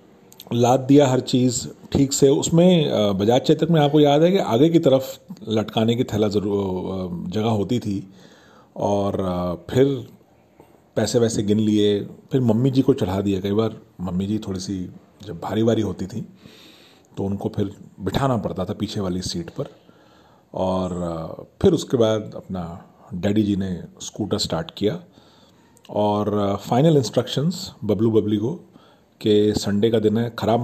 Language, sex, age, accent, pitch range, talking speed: Hindi, male, 40-59, native, 100-130 Hz, 155 wpm